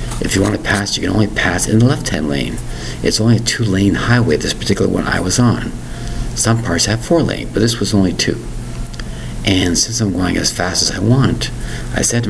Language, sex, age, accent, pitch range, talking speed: English, male, 50-69, American, 90-120 Hz, 220 wpm